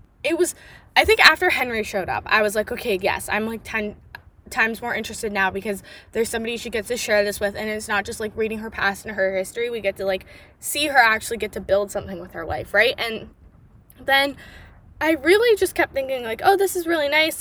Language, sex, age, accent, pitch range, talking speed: English, female, 10-29, American, 215-295 Hz, 235 wpm